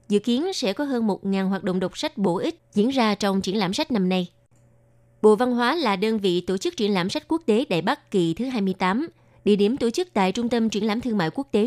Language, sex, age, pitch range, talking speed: Vietnamese, female, 20-39, 185-230 Hz, 260 wpm